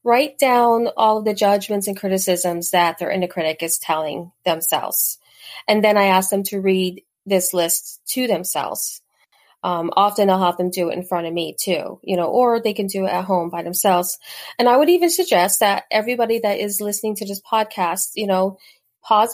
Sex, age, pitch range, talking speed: female, 30-49, 180-225 Hz, 200 wpm